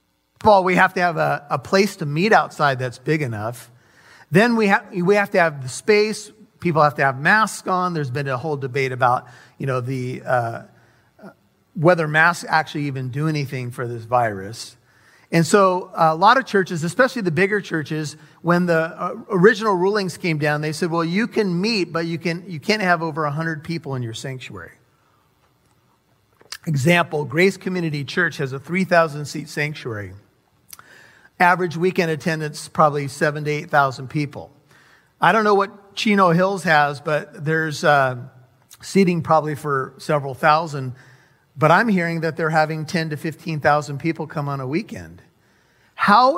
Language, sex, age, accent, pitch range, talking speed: English, male, 40-59, American, 145-180 Hz, 170 wpm